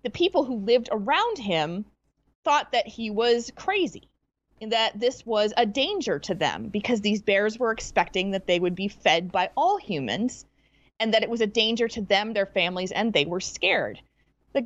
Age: 30-49